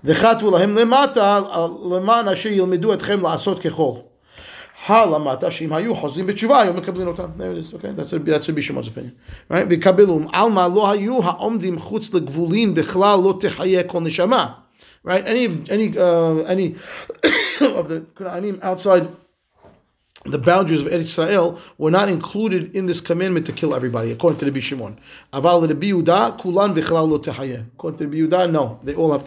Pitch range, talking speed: 150-190 Hz, 90 wpm